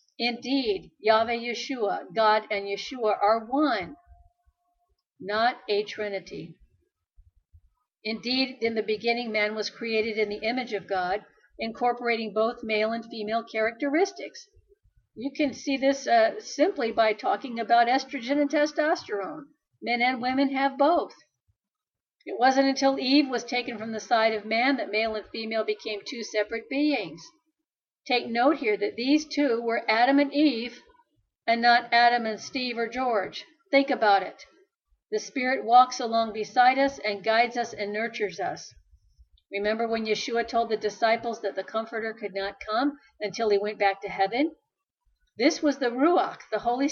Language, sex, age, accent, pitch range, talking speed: English, female, 50-69, American, 215-280 Hz, 155 wpm